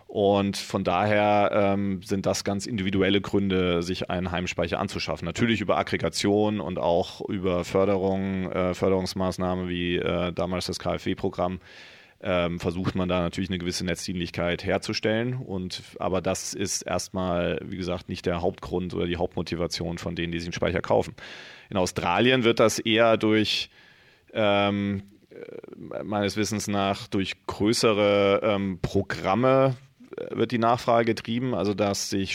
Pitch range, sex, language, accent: 90-105 Hz, male, German, German